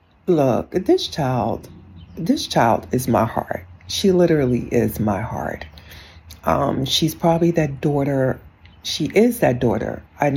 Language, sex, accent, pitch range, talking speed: English, female, American, 125-170 Hz, 135 wpm